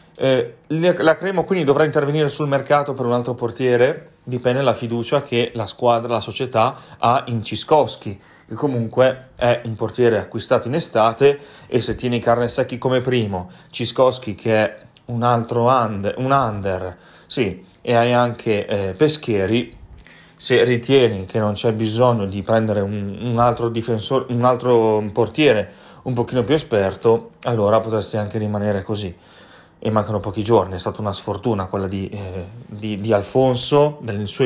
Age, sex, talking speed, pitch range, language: 30-49, male, 160 wpm, 110-130 Hz, Italian